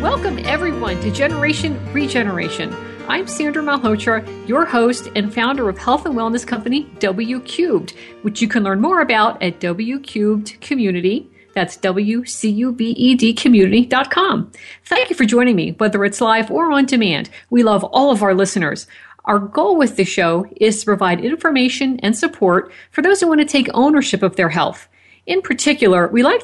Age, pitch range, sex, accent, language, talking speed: 50-69, 195-260 Hz, female, American, English, 165 wpm